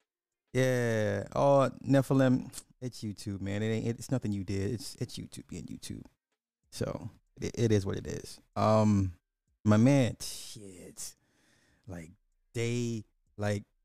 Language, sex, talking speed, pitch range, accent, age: English, male, 135 wpm, 100-125 Hz, American, 20-39